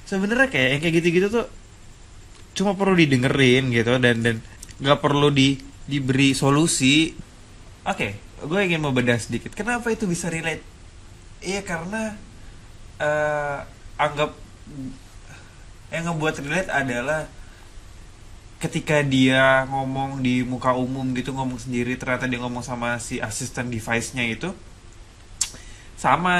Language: Indonesian